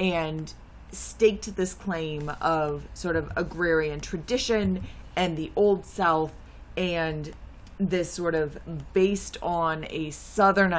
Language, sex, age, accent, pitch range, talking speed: English, female, 20-39, American, 155-195 Hz, 115 wpm